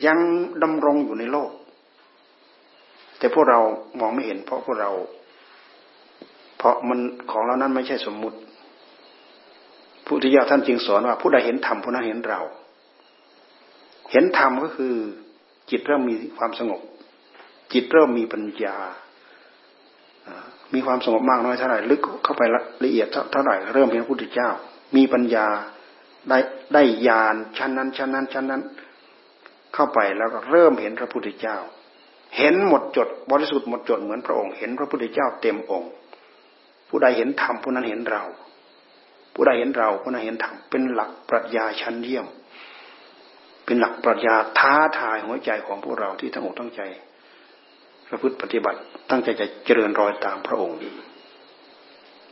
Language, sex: Thai, male